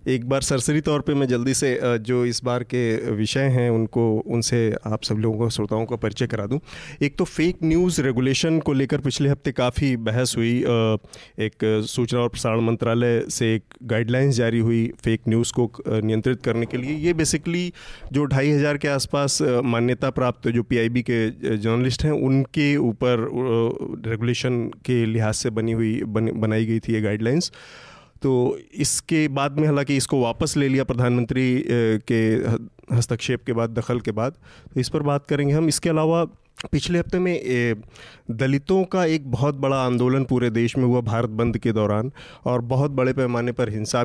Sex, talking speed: male, 180 wpm